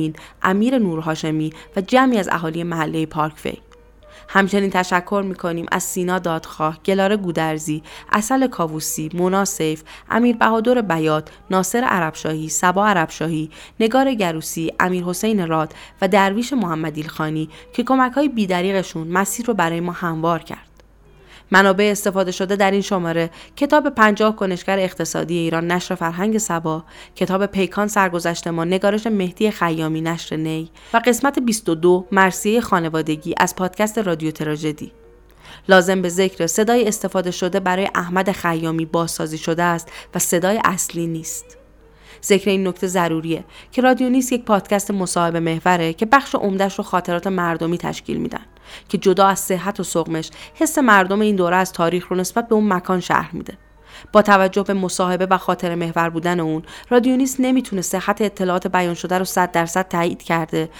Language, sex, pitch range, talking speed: Persian, female, 165-200 Hz, 150 wpm